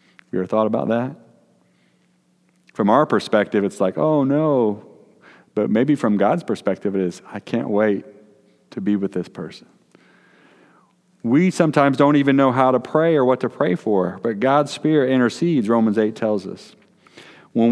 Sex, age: male, 40-59